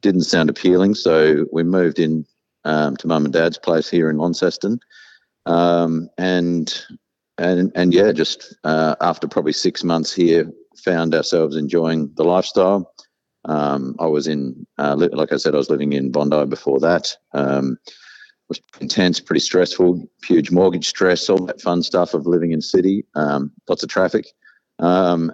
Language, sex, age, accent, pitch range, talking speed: English, male, 50-69, Australian, 75-85 Hz, 170 wpm